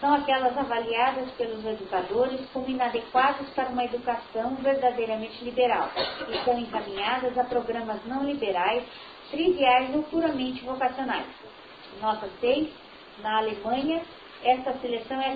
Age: 40-59